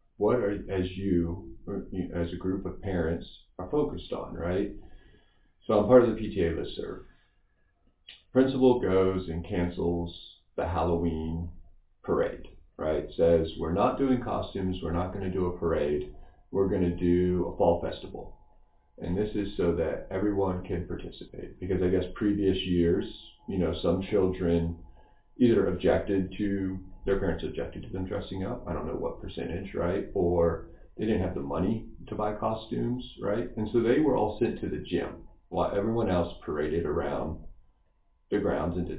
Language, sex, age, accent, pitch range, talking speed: English, male, 40-59, American, 85-115 Hz, 165 wpm